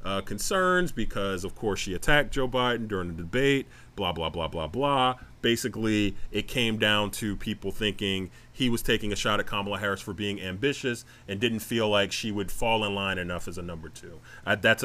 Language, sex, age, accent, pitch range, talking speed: English, male, 30-49, American, 100-130 Hz, 200 wpm